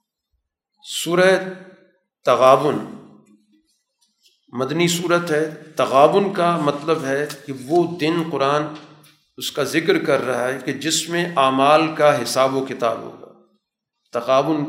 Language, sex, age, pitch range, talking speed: Urdu, male, 40-59, 135-170 Hz, 120 wpm